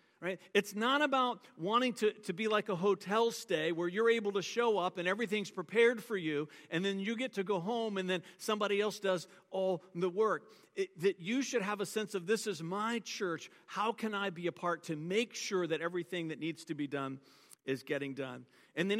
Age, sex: 50-69, male